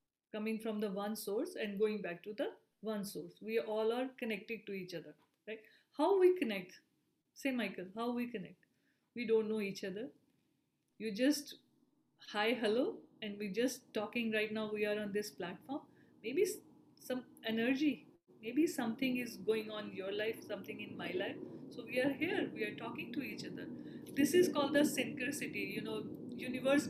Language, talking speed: English, 180 wpm